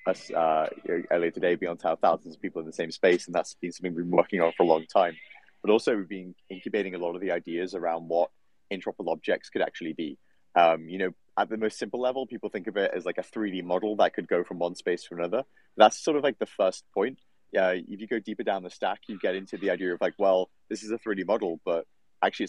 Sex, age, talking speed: male, 30-49, 265 wpm